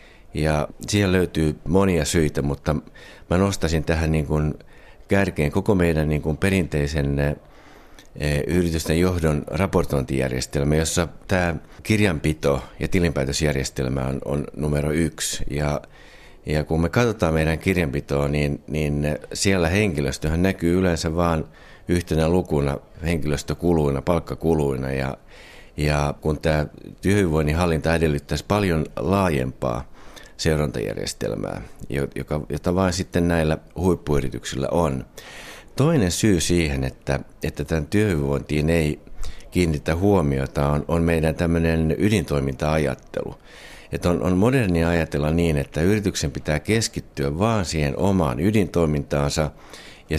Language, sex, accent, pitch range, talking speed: Finnish, male, native, 70-85 Hz, 110 wpm